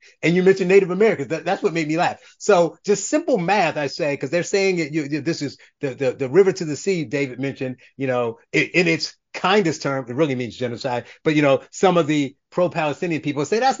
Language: English